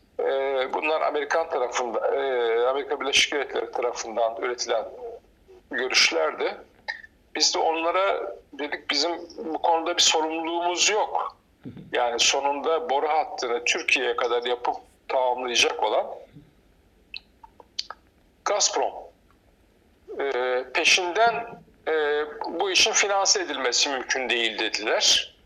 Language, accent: Turkish, native